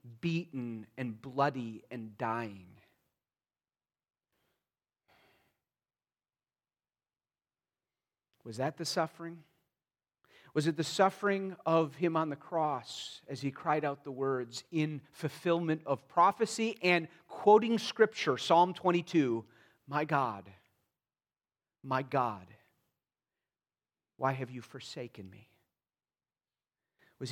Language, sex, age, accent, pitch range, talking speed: English, male, 40-59, American, 135-175 Hz, 95 wpm